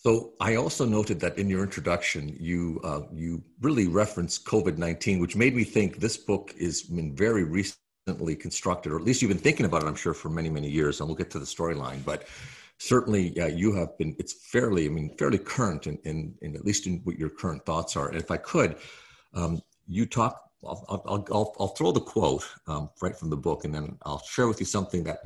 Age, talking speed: 50-69, 225 wpm